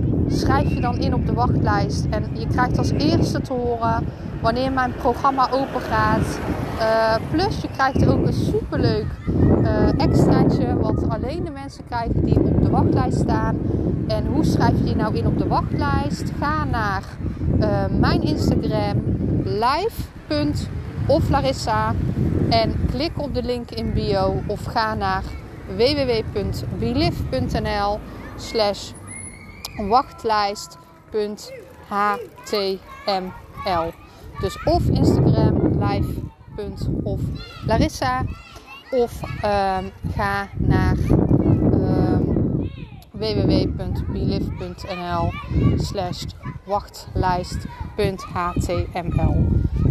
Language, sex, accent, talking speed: Dutch, female, Dutch, 95 wpm